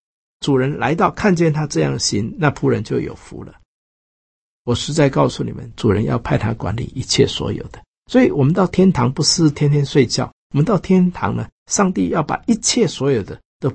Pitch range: 120-175 Hz